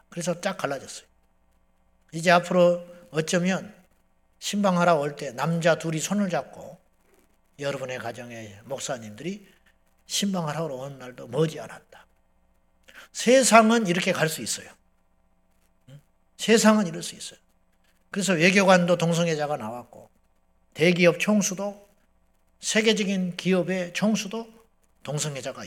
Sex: male